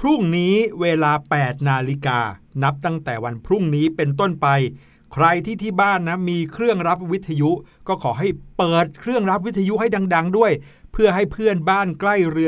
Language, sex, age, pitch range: Thai, male, 60-79, 145-200 Hz